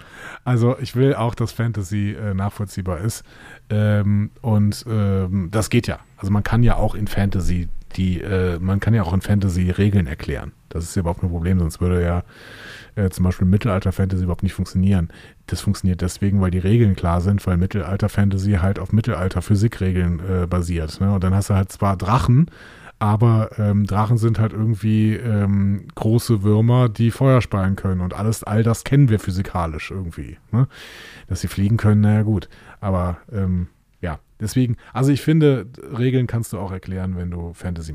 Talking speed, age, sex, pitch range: 180 wpm, 30-49, male, 95-120 Hz